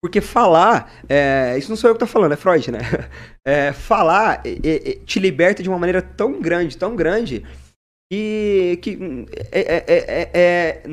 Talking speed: 175 wpm